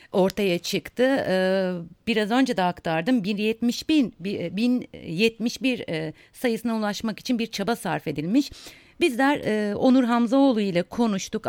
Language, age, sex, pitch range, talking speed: German, 50-69, female, 175-225 Hz, 105 wpm